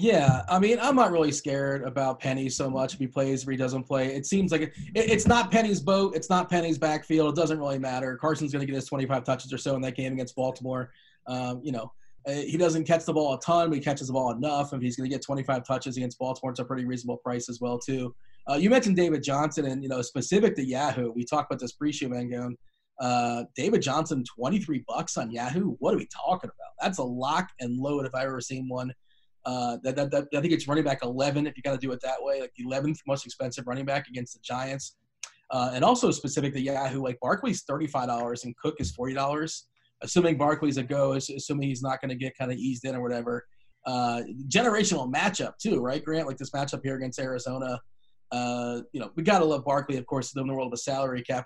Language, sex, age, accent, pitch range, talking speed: English, male, 20-39, American, 125-150 Hz, 240 wpm